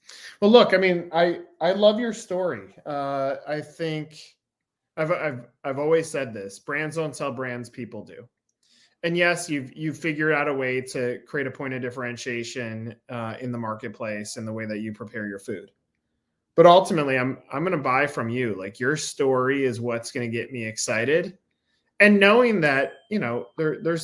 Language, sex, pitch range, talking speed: English, male, 125-160 Hz, 185 wpm